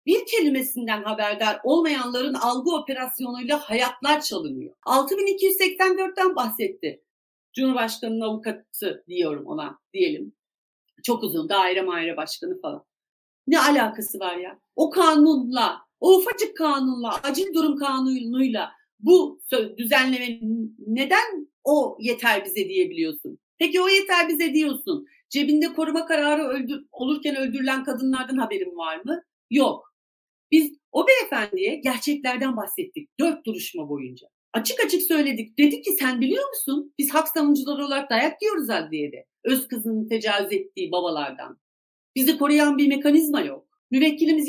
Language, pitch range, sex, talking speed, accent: Turkish, 235-330 Hz, female, 120 wpm, native